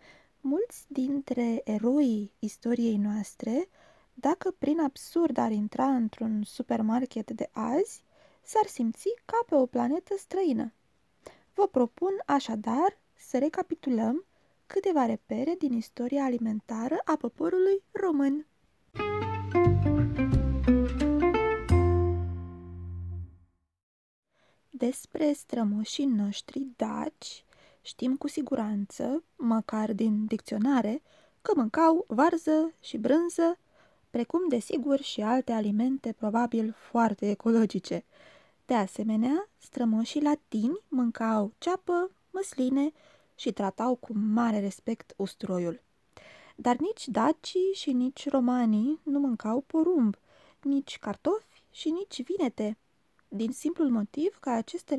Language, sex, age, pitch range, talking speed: Romanian, female, 20-39, 220-305 Hz, 95 wpm